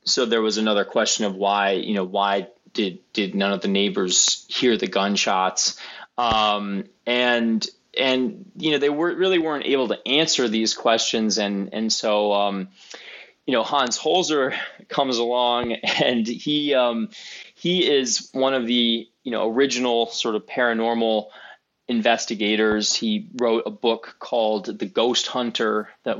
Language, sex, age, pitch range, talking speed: English, male, 20-39, 105-125 Hz, 155 wpm